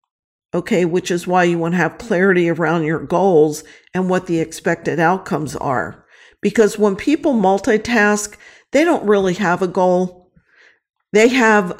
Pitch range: 170-205 Hz